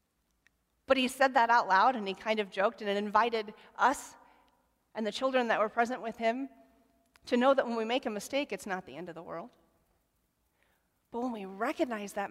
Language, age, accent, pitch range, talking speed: English, 30-49, American, 200-240 Hz, 210 wpm